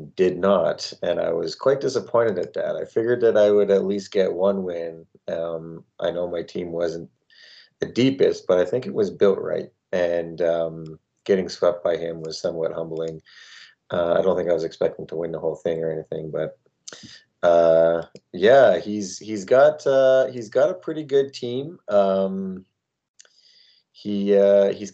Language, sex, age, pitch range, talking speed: English, male, 30-49, 85-115 Hz, 180 wpm